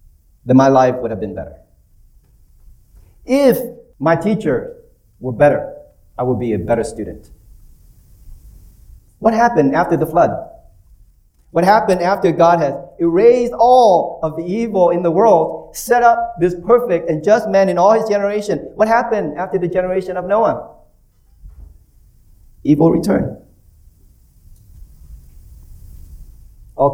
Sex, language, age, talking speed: male, English, 40-59, 125 wpm